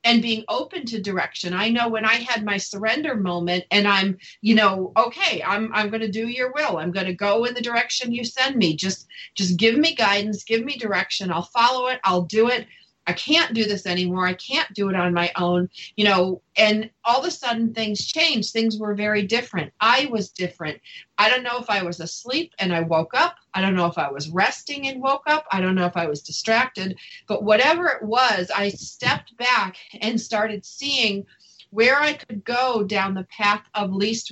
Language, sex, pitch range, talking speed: English, female, 190-240 Hz, 215 wpm